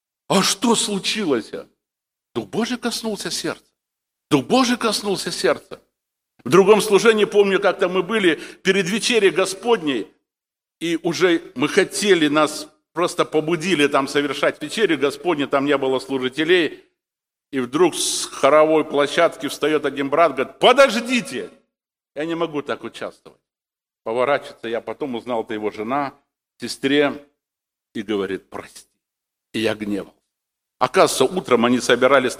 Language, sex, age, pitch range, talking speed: Russian, male, 60-79, 130-185 Hz, 130 wpm